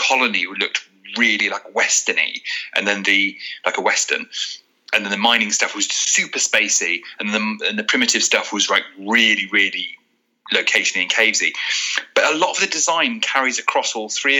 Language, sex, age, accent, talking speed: English, male, 30-49, British, 175 wpm